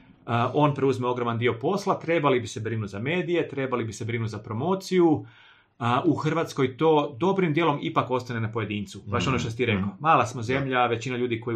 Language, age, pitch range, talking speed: Croatian, 30-49, 115-160 Hz, 200 wpm